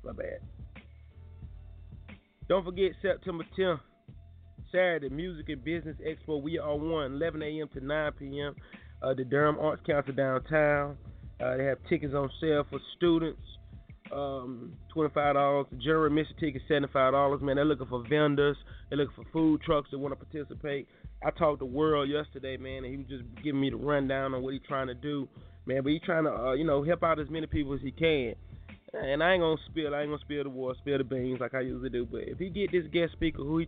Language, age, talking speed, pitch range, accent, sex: English, 30-49, 205 wpm, 130-160 Hz, American, male